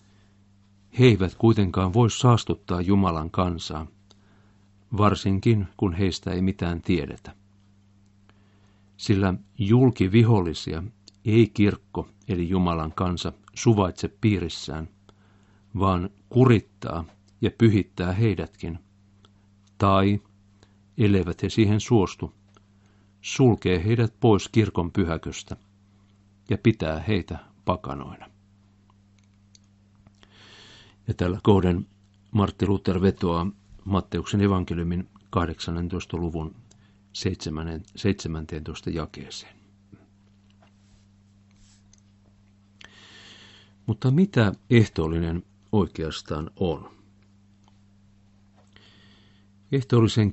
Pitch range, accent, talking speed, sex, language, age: 95-100 Hz, native, 70 wpm, male, Finnish, 50-69